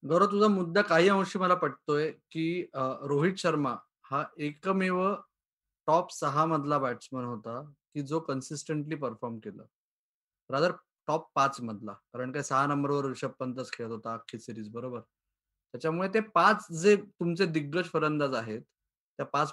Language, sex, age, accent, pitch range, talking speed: Marathi, male, 20-39, native, 140-185 Hz, 135 wpm